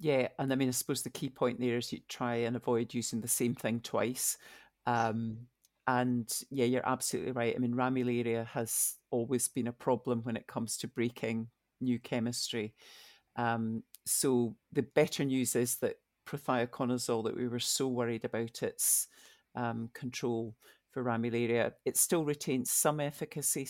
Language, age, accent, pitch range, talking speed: English, 50-69, British, 115-130 Hz, 165 wpm